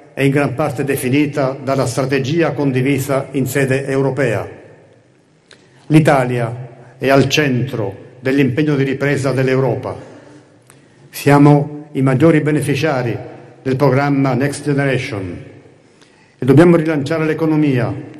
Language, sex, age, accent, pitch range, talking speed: Italian, male, 50-69, native, 130-155 Hz, 100 wpm